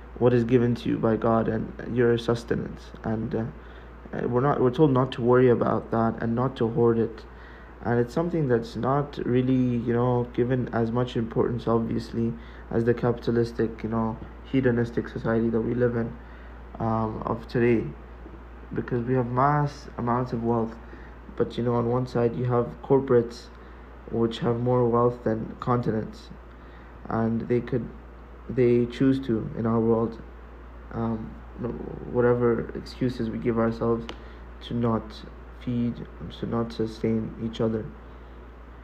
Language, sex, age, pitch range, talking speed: English, male, 20-39, 110-120 Hz, 150 wpm